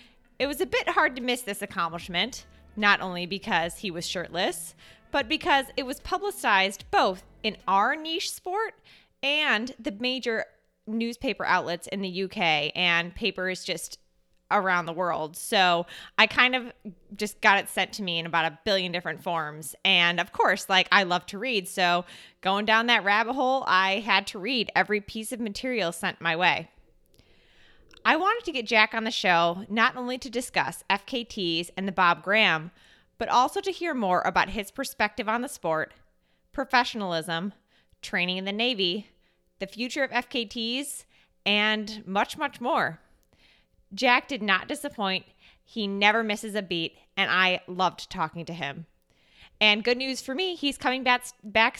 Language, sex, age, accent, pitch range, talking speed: English, female, 20-39, American, 180-250 Hz, 170 wpm